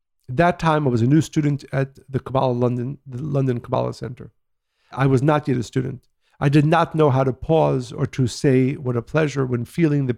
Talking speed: 220 wpm